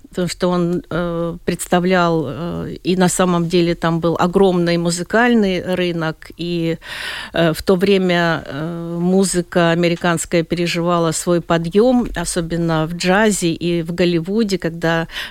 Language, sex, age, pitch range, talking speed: Russian, female, 50-69, 170-215 Hz, 115 wpm